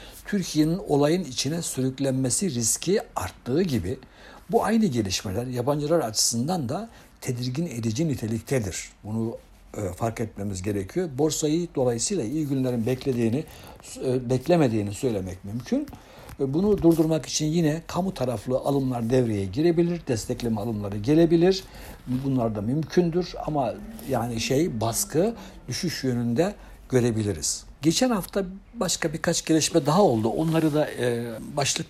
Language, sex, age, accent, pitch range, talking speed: Turkish, male, 60-79, native, 115-160 Hz, 115 wpm